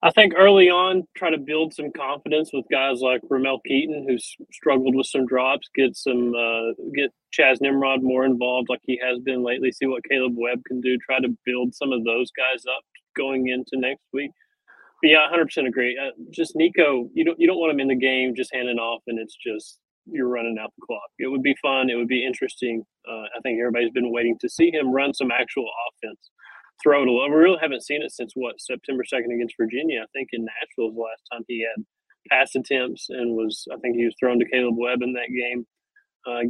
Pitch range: 120-135 Hz